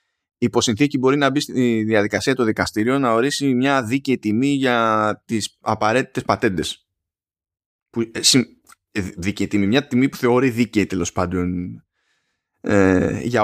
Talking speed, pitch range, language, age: 130 wpm, 105-135 Hz, Greek, 20-39